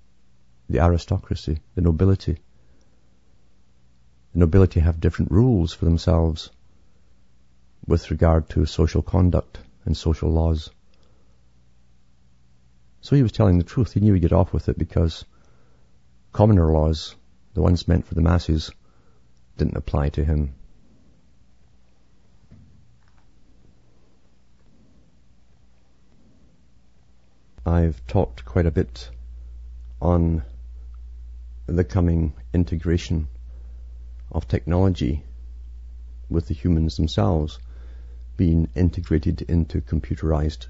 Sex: male